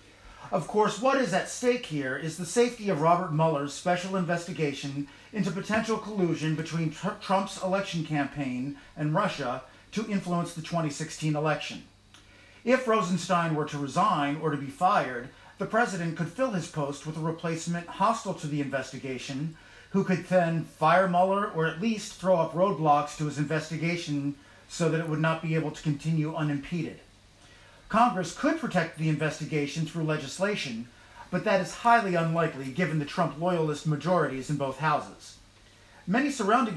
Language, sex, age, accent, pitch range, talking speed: English, male, 40-59, American, 145-185 Hz, 160 wpm